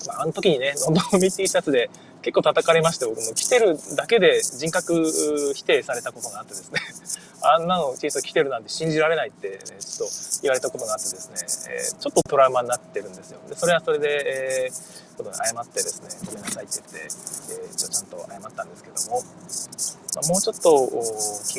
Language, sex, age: Japanese, male, 20-39